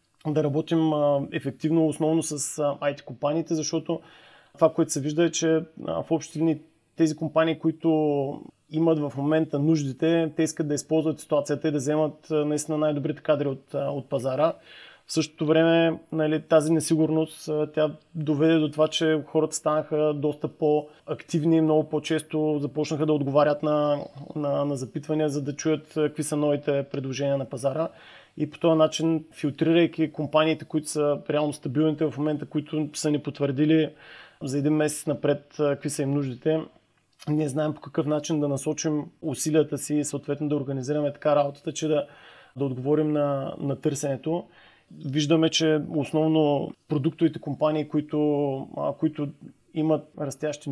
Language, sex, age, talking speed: Bulgarian, male, 30-49, 145 wpm